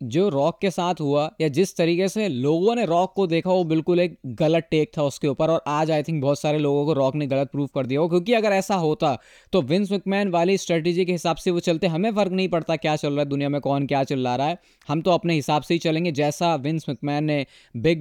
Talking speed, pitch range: 260 wpm, 150-190 Hz